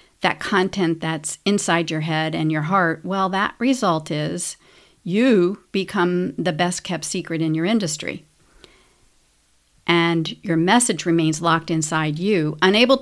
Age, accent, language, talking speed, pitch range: 50-69, American, English, 135 wpm, 165-215 Hz